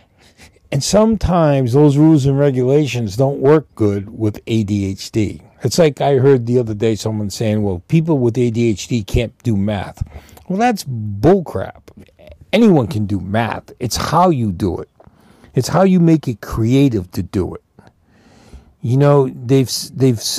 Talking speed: 155 wpm